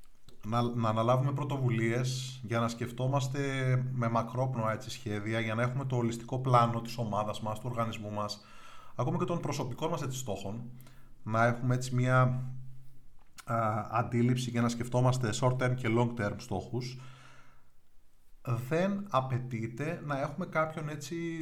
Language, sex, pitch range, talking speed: Greek, male, 115-135 Hz, 140 wpm